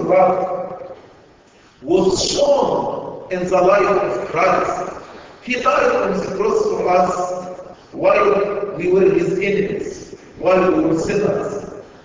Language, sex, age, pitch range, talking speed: English, male, 50-69, 180-250 Hz, 115 wpm